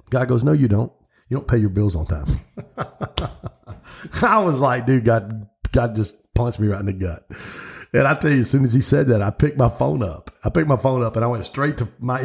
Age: 50-69